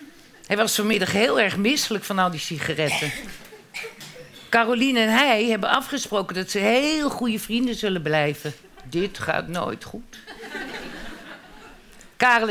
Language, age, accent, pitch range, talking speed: Dutch, 50-69, Dutch, 155-210 Hz, 130 wpm